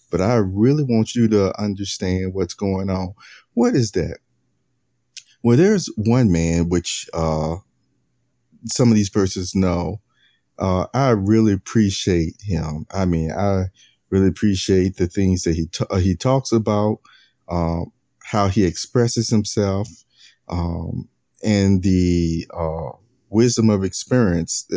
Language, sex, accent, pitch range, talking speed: English, male, American, 90-115 Hz, 130 wpm